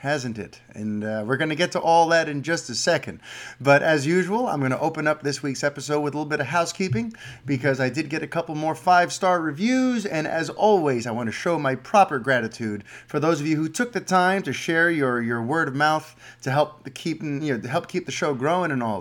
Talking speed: 235 wpm